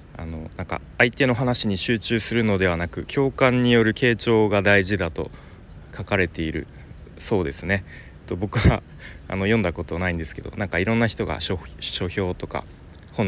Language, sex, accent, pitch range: Japanese, male, native, 85-115 Hz